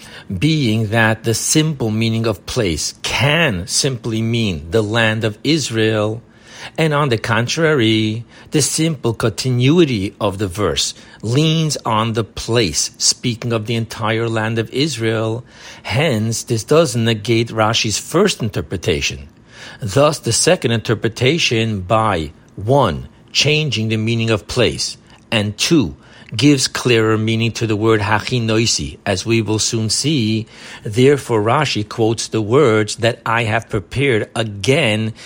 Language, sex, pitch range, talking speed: English, male, 110-130 Hz, 130 wpm